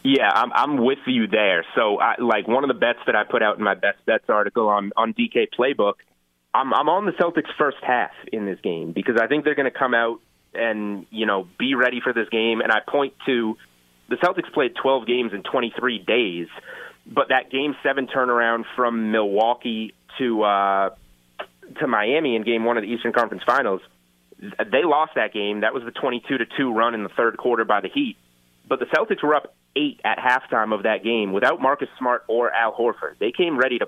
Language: English